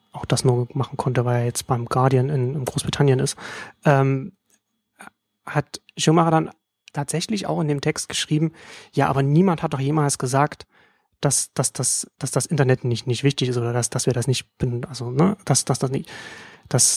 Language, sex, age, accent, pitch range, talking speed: German, male, 30-49, German, 130-160 Hz, 185 wpm